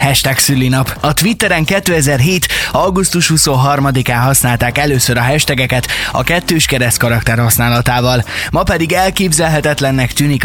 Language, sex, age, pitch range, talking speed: Hungarian, male, 20-39, 115-150 Hz, 115 wpm